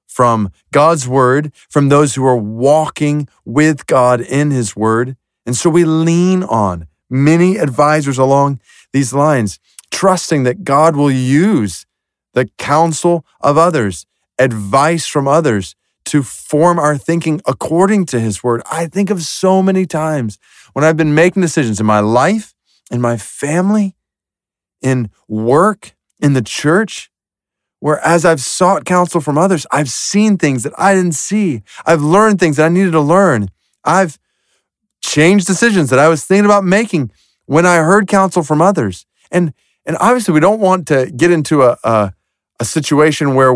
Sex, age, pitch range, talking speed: male, 40-59, 125-175 Hz, 160 wpm